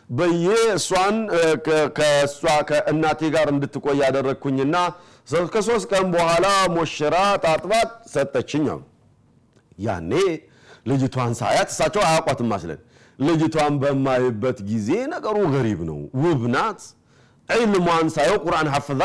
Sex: male